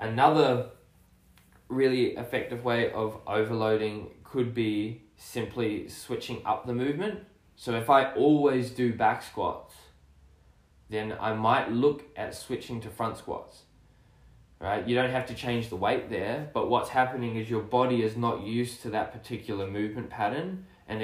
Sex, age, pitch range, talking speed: male, 10-29, 105-120 Hz, 155 wpm